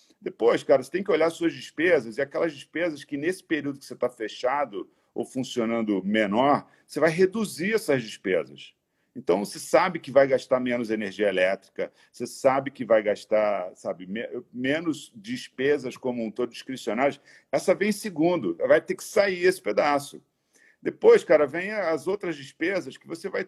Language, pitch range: Portuguese, 125-210 Hz